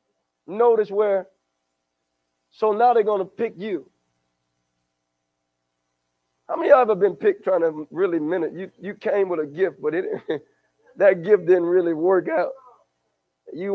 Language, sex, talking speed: English, male, 145 wpm